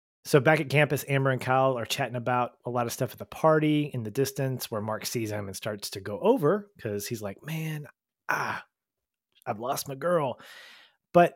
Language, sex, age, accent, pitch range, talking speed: English, male, 30-49, American, 105-140 Hz, 205 wpm